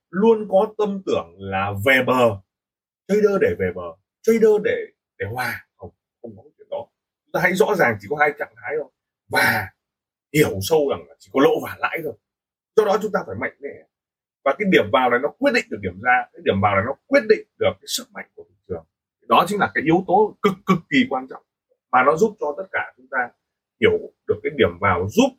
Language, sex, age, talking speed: Vietnamese, male, 20-39, 235 wpm